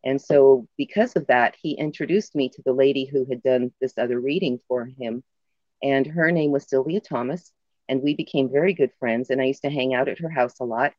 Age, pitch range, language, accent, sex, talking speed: 40-59, 125-160 Hz, English, American, female, 230 wpm